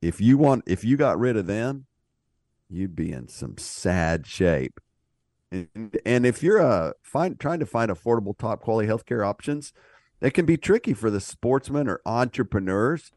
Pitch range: 105-150 Hz